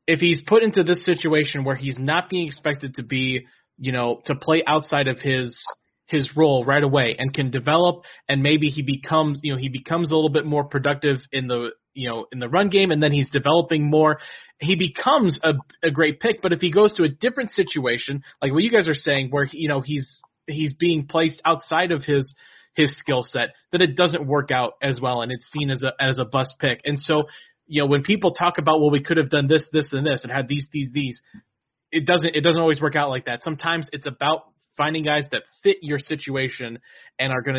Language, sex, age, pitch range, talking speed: English, male, 30-49, 135-160 Hz, 235 wpm